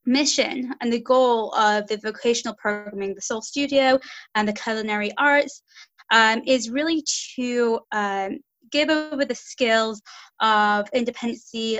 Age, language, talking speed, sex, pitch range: 20-39, English, 130 wpm, female, 210-255 Hz